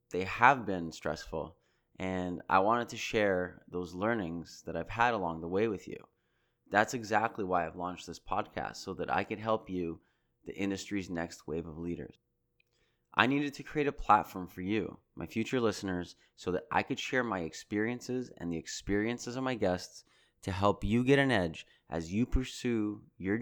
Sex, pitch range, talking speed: male, 90-120 Hz, 185 wpm